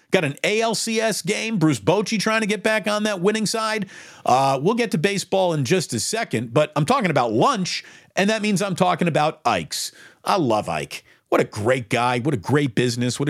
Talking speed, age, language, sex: 210 wpm, 50-69, English, male